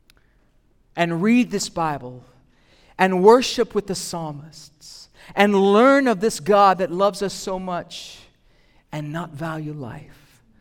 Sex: male